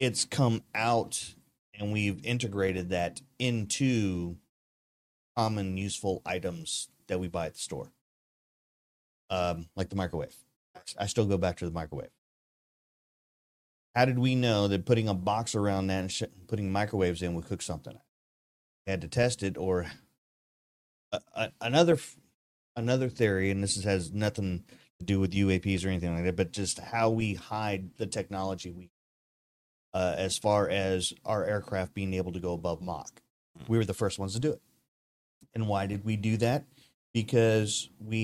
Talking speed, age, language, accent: 170 wpm, 30-49, English, American